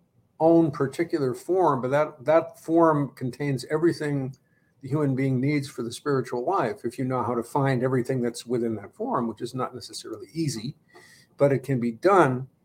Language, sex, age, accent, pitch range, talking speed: English, male, 50-69, American, 130-155 Hz, 180 wpm